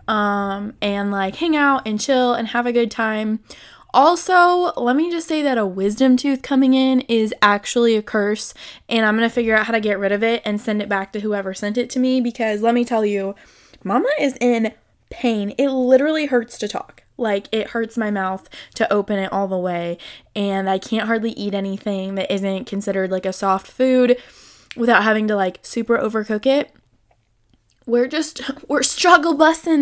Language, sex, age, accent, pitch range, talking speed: English, female, 10-29, American, 205-255 Hz, 195 wpm